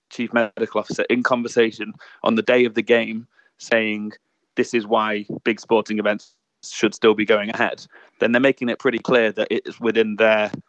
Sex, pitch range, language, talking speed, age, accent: male, 105-115 Hz, English, 190 wpm, 20-39, British